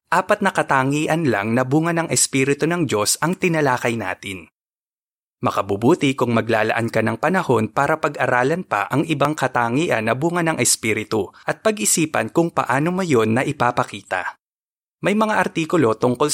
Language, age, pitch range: Filipino, 20-39, 120-165 Hz